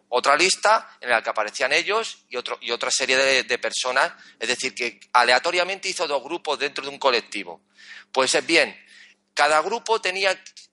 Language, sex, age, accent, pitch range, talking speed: Spanish, male, 30-49, Spanish, 135-180 Hz, 180 wpm